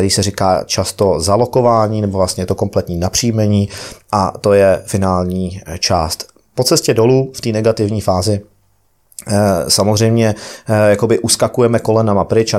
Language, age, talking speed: Czech, 30-49, 135 wpm